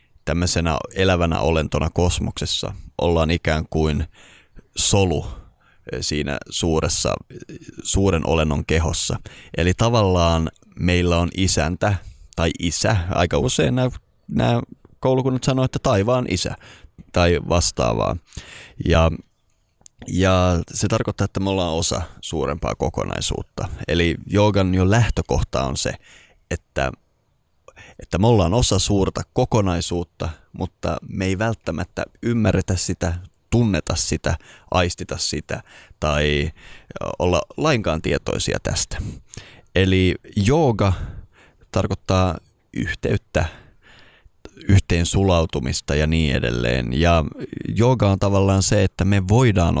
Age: 30-49